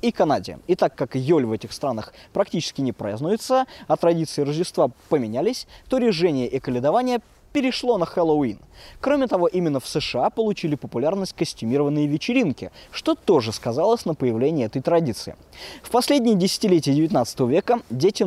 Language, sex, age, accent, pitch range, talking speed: Russian, male, 20-39, native, 130-220 Hz, 150 wpm